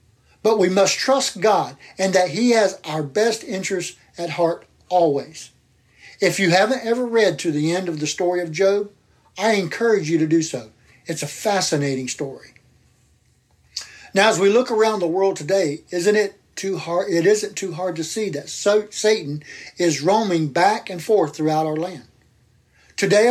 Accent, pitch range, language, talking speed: American, 145-195 Hz, English, 170 wpm